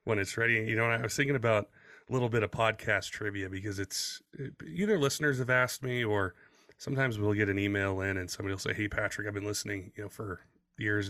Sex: male